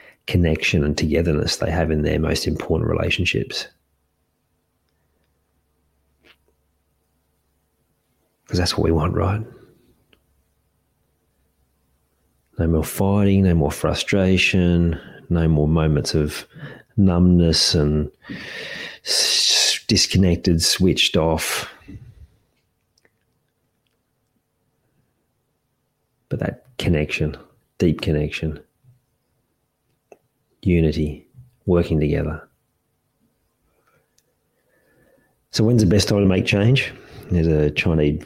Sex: male